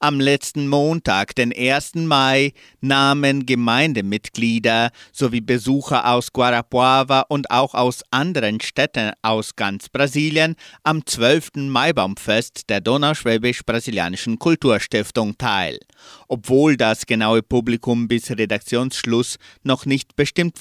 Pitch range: 110-140 Hz